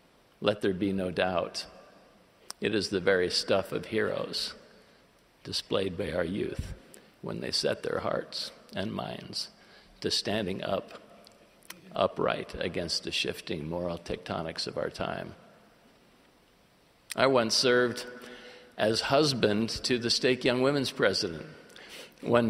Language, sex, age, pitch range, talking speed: English, male, 50-69, 110-125 Hz, 125 wpm